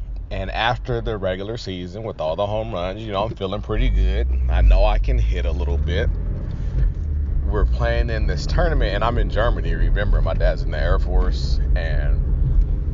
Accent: American